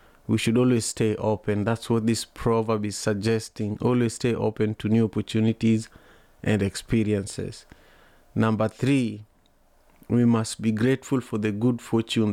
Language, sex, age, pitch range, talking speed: English, male, 30-49, 105-120 Hz, 140 wpm